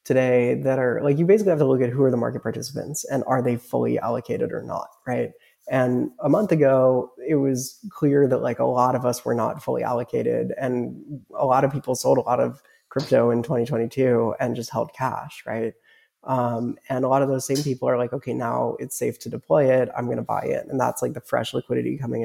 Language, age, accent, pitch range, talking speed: English, 20-39, American, 125-150 Hz, 230 wpm